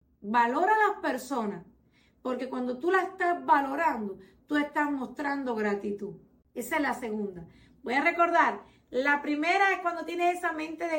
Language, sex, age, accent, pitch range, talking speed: Spanish, female, 40-59, American, 220-280 Hz, 160 wpm